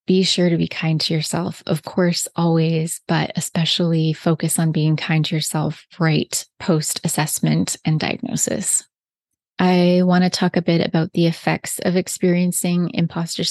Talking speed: 150 wpm